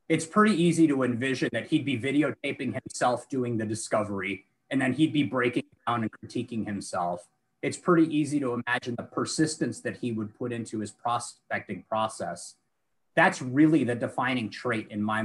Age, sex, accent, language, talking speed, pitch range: 30-49, male, American, English, 175 wpm, 115-150 Hz